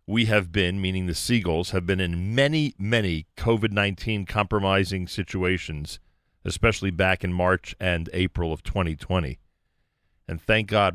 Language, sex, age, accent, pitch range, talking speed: English, male, 40-59, American, 85-110 Hz, 135 wpm